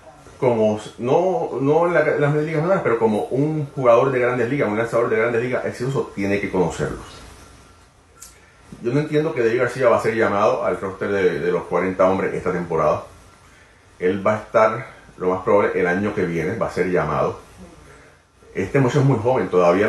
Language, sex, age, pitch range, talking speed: Spanish, male, 30-49, 90-135 Hz, 195 wpm